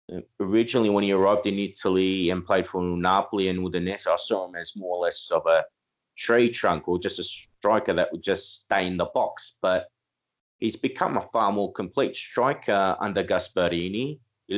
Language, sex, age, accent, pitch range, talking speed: English, male, 30-49, Australian, 95-120 Hz, 190 wpm